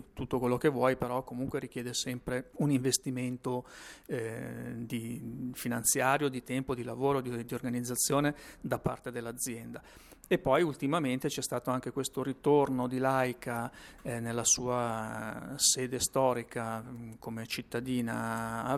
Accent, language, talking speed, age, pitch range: native, Italian, 125 wpm, 40-59, 120-135 Hz